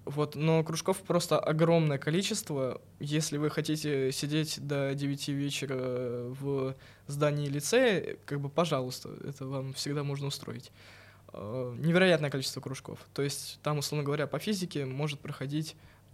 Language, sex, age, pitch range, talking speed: Russian, male, 20-39, 130-155 Hz, 140 wpm